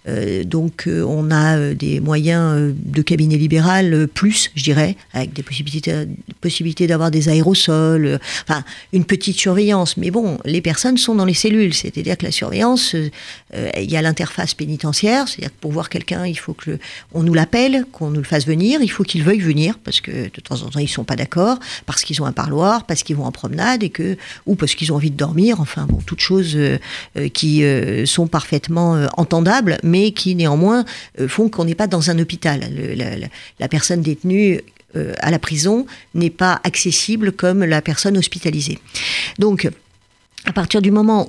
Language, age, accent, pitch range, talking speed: French, 50-69, French, 155-190 Hz, 205 wpm